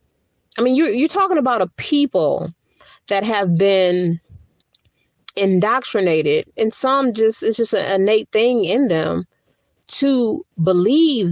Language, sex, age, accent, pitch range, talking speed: English, female, 40-59, American, 160-225 Hz, 125 wpm